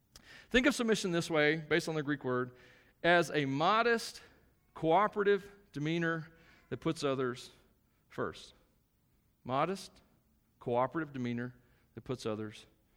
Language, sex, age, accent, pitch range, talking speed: English, male, 40-59, American, 130-190 Hz, 115 wpm